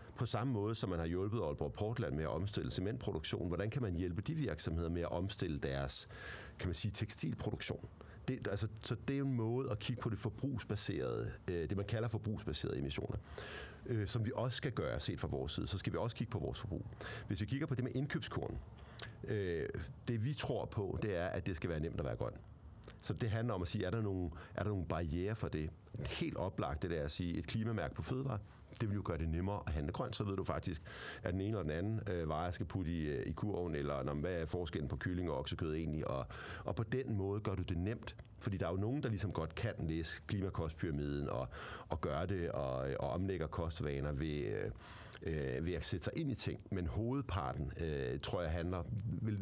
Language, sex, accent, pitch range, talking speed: Danish, male, native, 85-115 Hz, 230 wpm